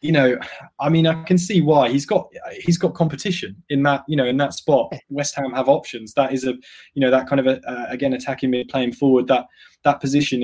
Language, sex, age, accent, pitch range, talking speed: English, male, 20-39, British, 120-140 Hz, 240 wpm